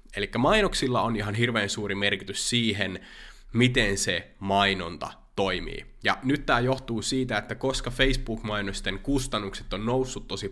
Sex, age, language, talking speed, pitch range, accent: male, 20-39, Finnish, 135 wpm, 95-120 Hz, native